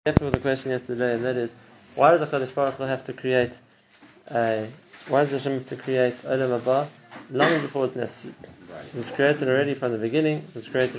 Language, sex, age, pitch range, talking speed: English, male, 20-39, 120-140 Hz, 190 wpm